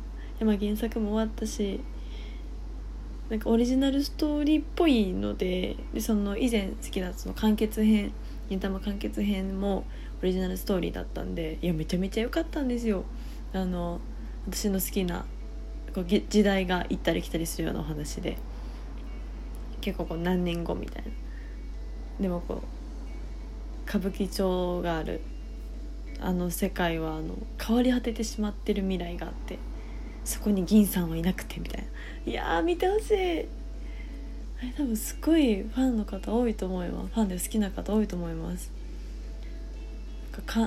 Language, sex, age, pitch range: Japanese, female, 20-39, 175-220 Hz